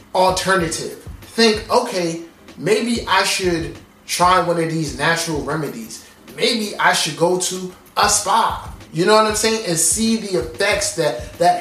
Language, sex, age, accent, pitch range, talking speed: English, male, 20-39, American, 145-185 Hz, 155 wpm